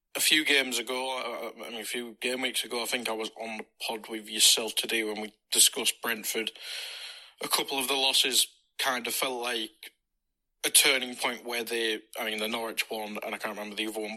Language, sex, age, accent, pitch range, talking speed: English, male, 20-39, British, 110-135 Hz, 215 wpm